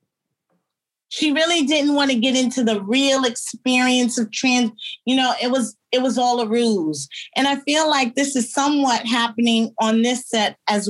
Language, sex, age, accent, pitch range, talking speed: English, female, 30-49, American, 215-250 Hz, 180 wpm